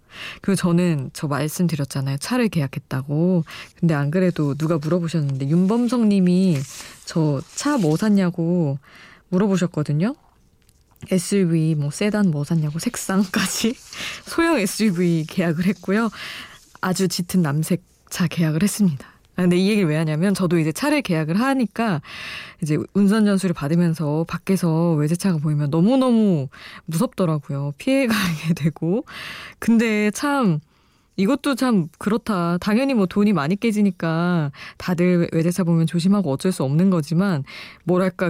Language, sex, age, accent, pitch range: Korean, female, 20-39, native, 160-210 Hz